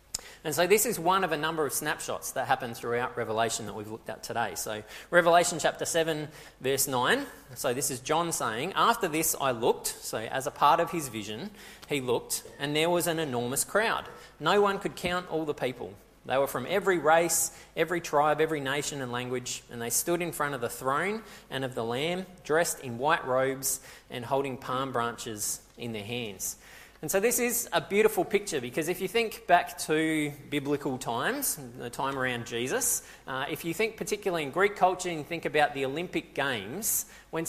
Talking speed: 200 wpm